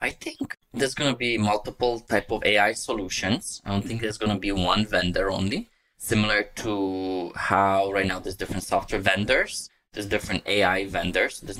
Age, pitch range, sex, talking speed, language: 20-39, 95-105 Hz, male, 180 wpm, English